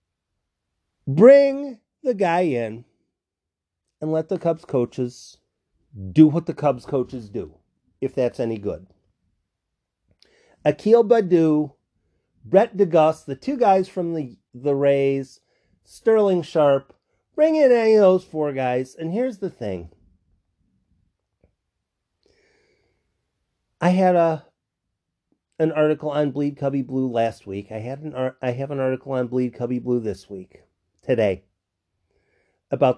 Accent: American